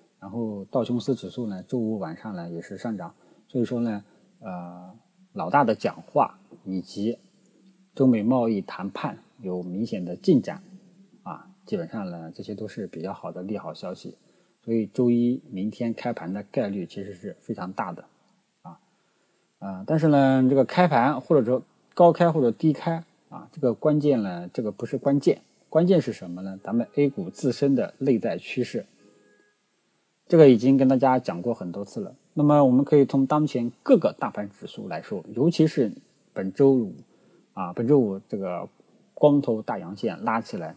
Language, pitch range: Chinese, 105-155 Hz